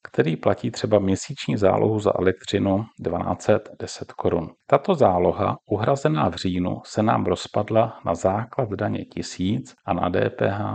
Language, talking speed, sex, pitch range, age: Czech, 135 wpm, male, 95-120 Hz, 40-59